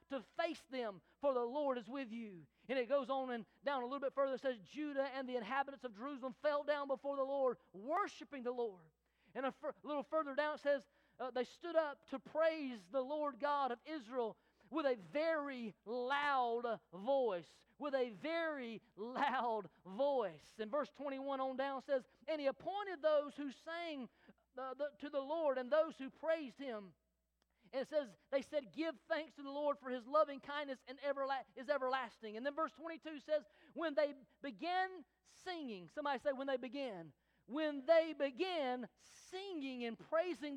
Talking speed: 180 wpm